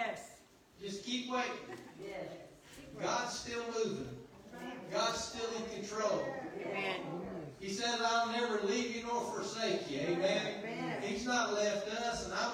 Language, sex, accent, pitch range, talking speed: English, male, American, 180-225 Hz, 125 wpm